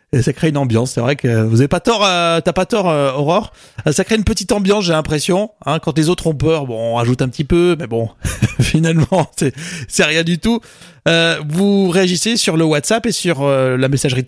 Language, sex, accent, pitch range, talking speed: French, male, French, 135-170 Hz, 235 wpm